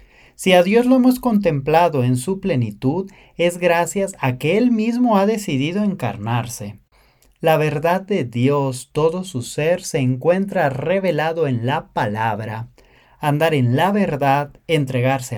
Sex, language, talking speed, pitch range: male, English, 140 wpm, 125-180 Hz